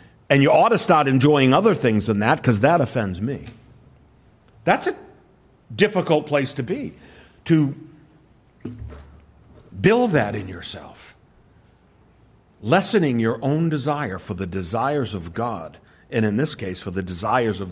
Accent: American